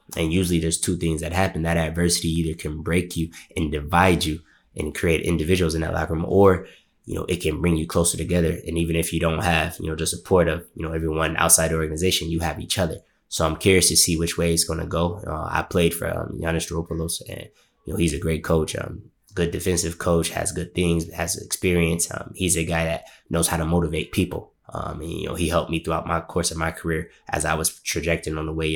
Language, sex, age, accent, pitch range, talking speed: English, male, 20-39, American, 80-85 Hz, 240 wpm